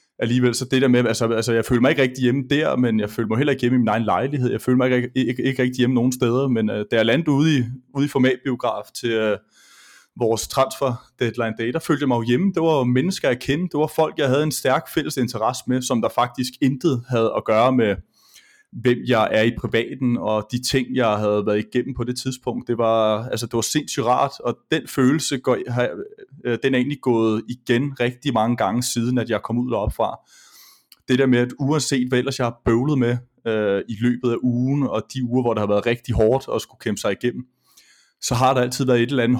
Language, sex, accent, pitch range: Danish, male, native, 115-130 Hz